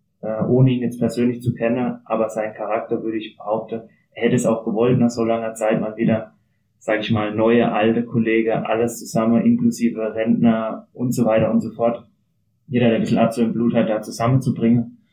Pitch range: 115-125 Hz